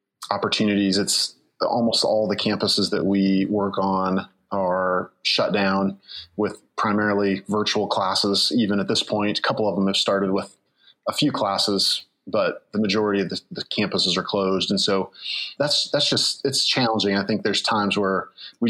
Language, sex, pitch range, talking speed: English, male, 95-105 Hz, 170 wpm